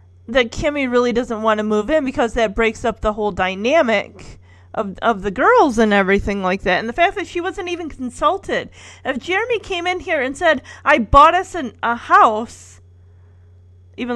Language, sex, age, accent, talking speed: English, female, 30-49, American, 190 wpm